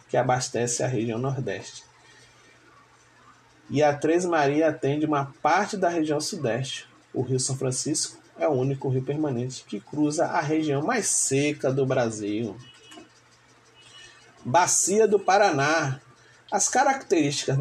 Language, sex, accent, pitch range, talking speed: Portuguese, male, Brazilian, 125-150 Hz, 125 wpm